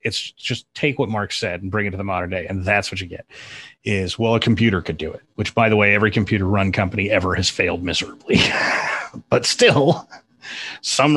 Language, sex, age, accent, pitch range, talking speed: English, male, 30-49, American, 90-110 Hz, 215 wpm